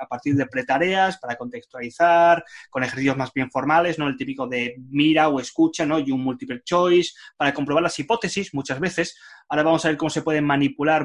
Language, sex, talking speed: Spanish, male, 200 wpm